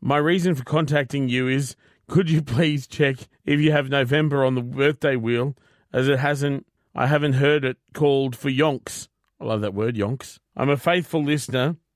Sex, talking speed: male, 185 wpm